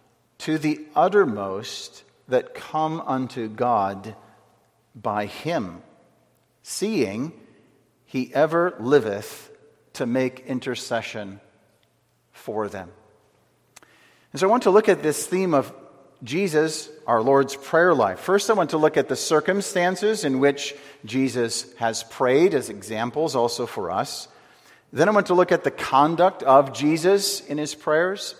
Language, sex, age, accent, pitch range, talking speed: English, male, 40-59, American, 115-155 Hz, 135 wpm